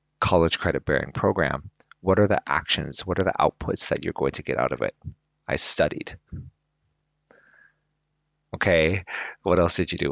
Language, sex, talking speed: English, male, 165 wpm